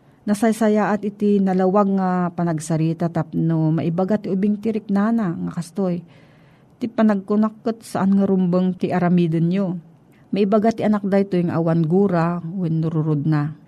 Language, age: Filipino, 40-59